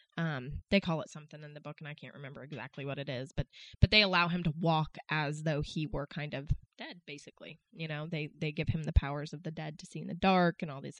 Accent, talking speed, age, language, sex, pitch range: American, 275 wpm, 20-39, English, female, 150-175 Hz